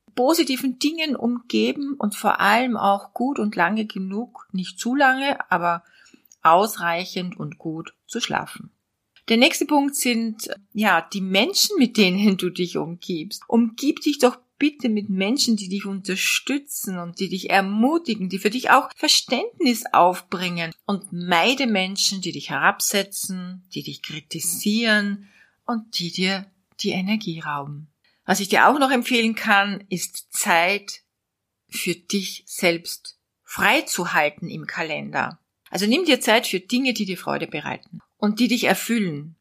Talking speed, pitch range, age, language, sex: 150 wpm, 185-250 Hz, 40-59, German, female